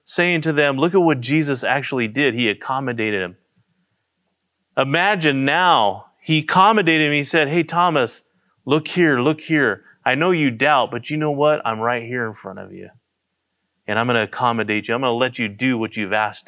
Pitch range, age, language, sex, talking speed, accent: 115-160 Hz, 30-49, English, male, 200 wpm, American